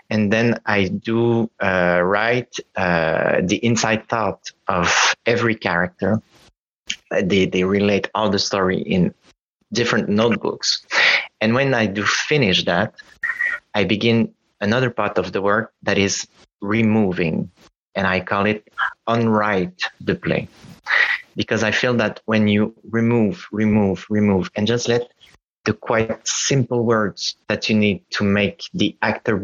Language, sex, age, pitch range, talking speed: English, male, 30-49, 95-110 Hz, 140 wpm